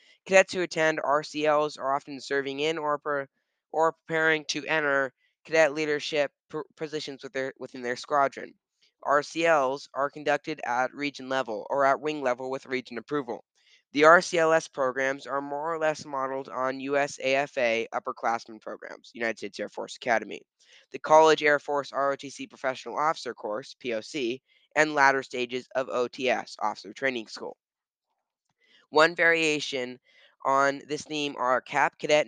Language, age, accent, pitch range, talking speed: English, 10-29, American, 130-150 Hz, 140 wpm